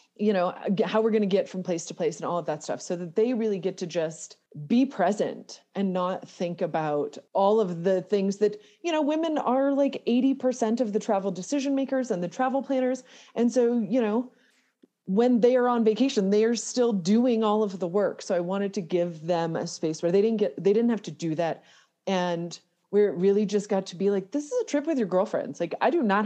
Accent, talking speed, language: American, 235 wpm, English